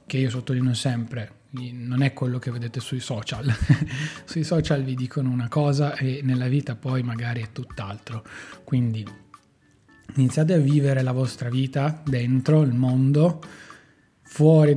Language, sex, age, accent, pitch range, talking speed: Italian, male, 20-39, native, 130-150 Hz, 140 wpm